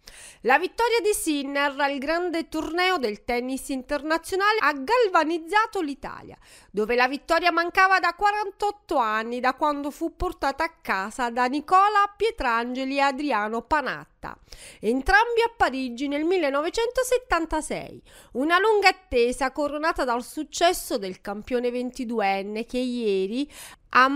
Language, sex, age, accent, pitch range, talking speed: Italian, female, 30-49, native, 255-370 Hz, 120 wpm